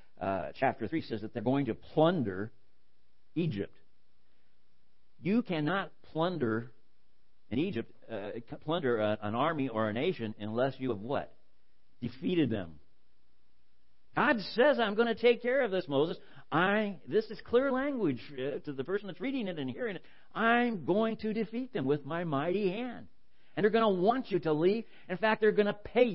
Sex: male